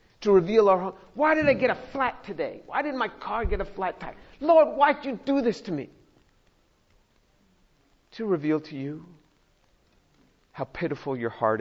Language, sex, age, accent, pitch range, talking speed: English, male, 50-69, American, 155-235 Hz, 180 wpm